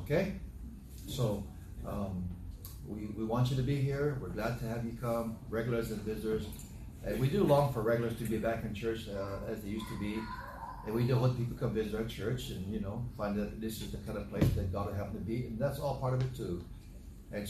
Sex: male